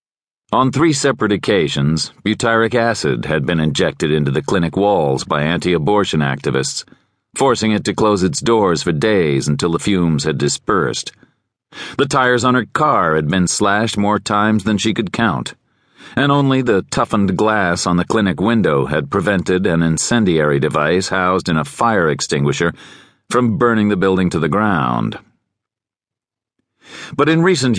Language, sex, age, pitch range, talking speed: English, male, 40-59, 85-120 Hz, 155 wpm